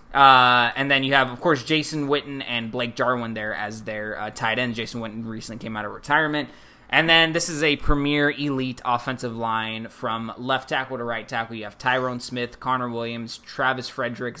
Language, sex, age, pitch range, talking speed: English, male, 20-39, 115-135 Hz, 200 wpm